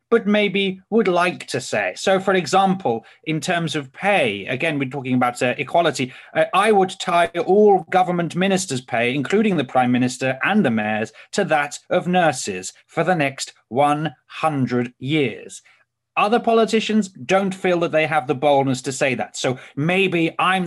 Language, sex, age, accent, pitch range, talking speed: English, male, 30-49, British, 140-190 Hz, 170 wpm